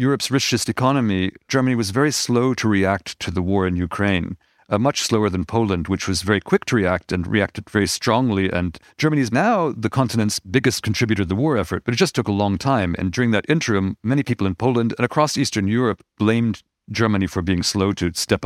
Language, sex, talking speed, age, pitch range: English, male, 220 wpm, 50-69, 95-120 Hz